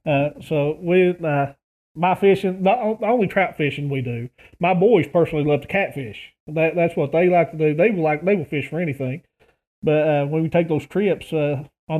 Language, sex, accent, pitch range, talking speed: English, male, American, 145-175 Hz, 195 wpm